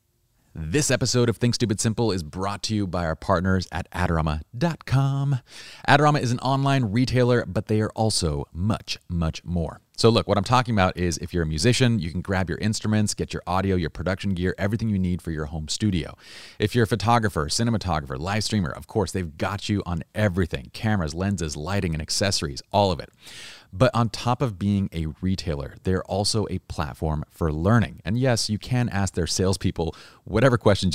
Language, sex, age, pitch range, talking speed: English, male, 30-49, 85-110 Hz, 195 wpm